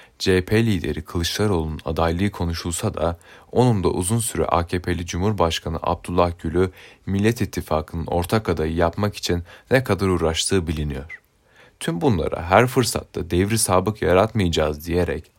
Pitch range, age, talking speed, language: 85-105 Hz, 30-49, 125 wpm, Turkish